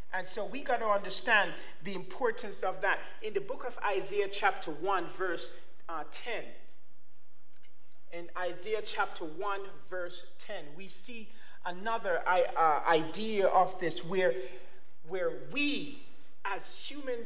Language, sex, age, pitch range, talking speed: English, male, 40-59, 195-275 Hz, 130 wpm